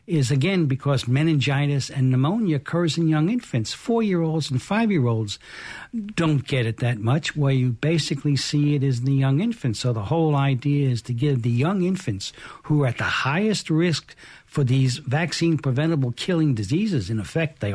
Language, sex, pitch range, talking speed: English, male, 130-165 Hz, 175 wpm